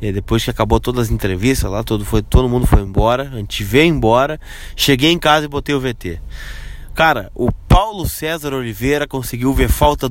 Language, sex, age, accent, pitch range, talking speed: Portuguese, male, 20-39, Brazilian, 110-135 Hz, 195 wpm